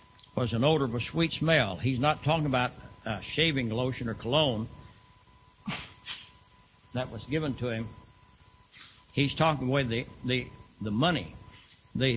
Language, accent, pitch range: English, American, 110-140 Hz